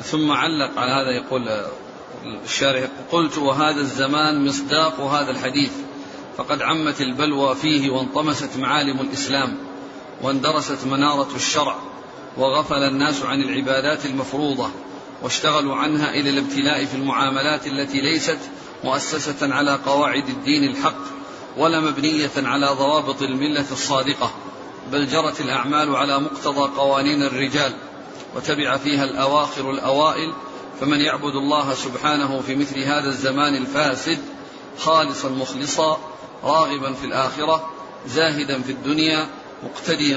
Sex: male